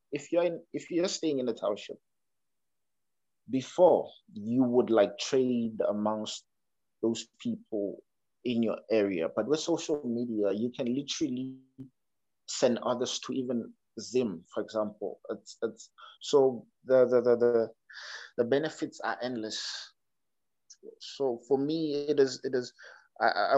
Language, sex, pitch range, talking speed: English, male, 115-140 Hz, 130 wpm